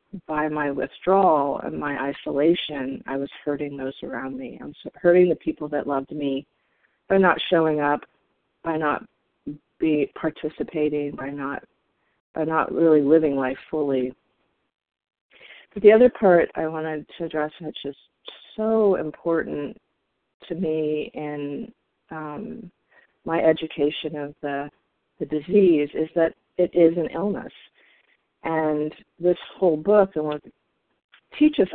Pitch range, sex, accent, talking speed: 145-170 Hz, female, American, 130 wpm